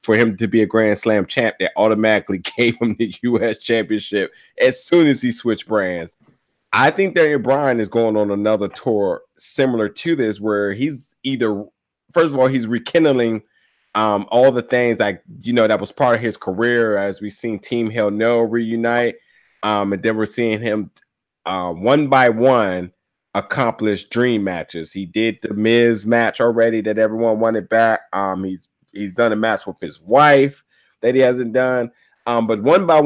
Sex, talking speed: male, 185 wpm